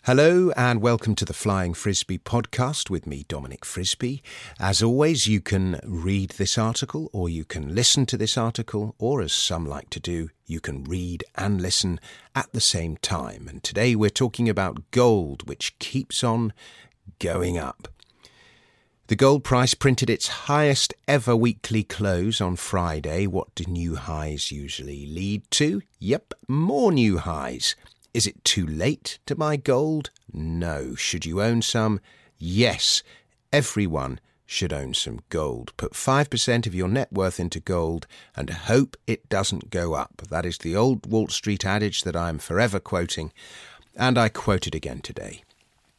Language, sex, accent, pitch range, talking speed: English, male, British, 85-120 Hz, 160 wpm